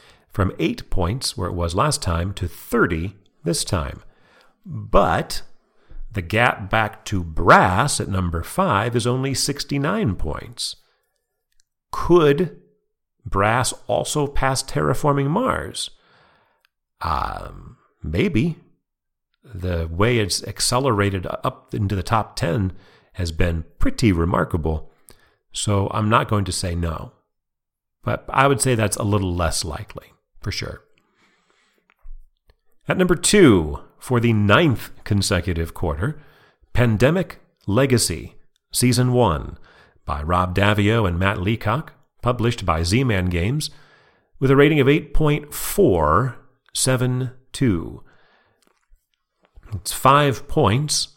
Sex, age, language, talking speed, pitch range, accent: male, 40-59, English, 115 wpm, 90-135 Hz, American